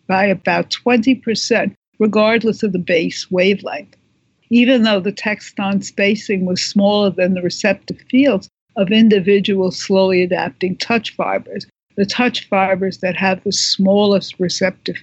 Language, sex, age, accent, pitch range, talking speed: English, female, 60-79, American, 185-220 Hz, 135 wpm